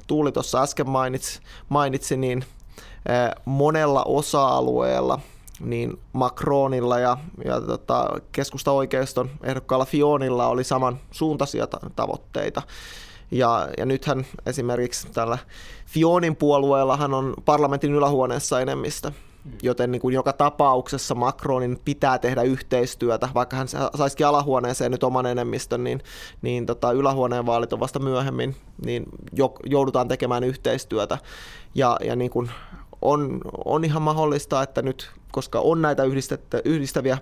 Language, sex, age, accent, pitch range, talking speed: Finnish, male, 20-39, native, 125-140 Hz, 115 wpm